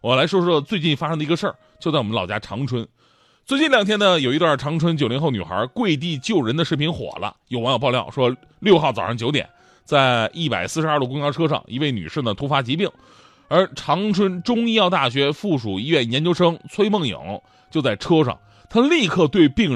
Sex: male